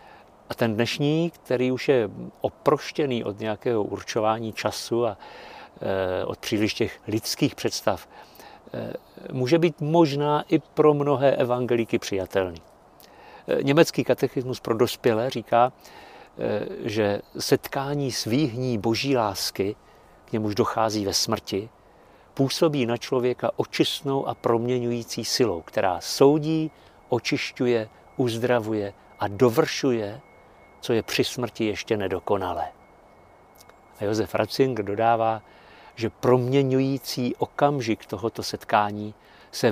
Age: 50-69